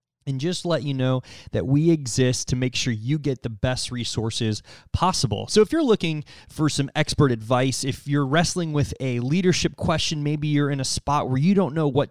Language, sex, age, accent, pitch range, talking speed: English, male, 20-39, American, 125-155 Hz, 210 wpm